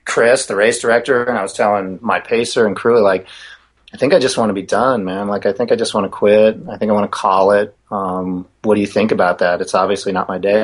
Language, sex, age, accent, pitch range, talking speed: English, male, 30-49, American, 100-150 Hz, 275 wpm